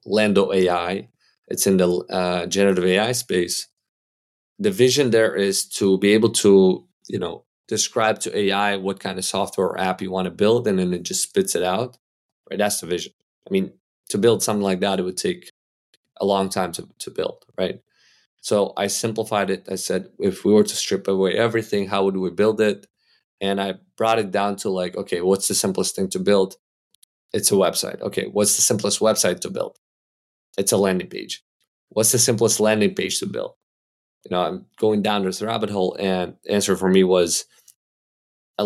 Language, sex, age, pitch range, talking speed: English, male, 20-39, 95-105 Hz, 200 wpm